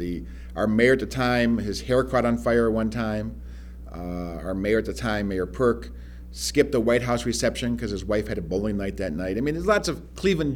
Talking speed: 240 wpm